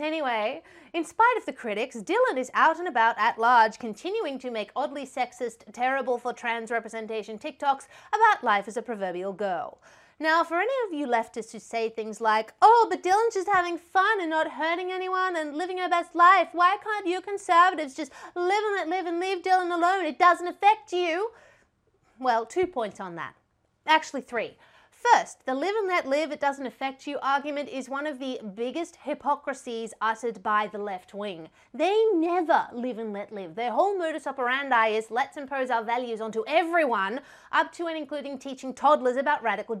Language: English